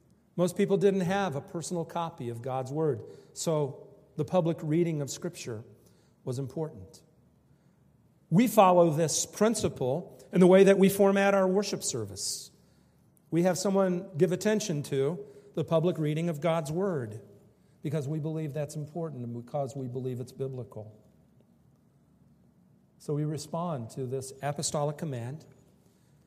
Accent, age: American, 50-69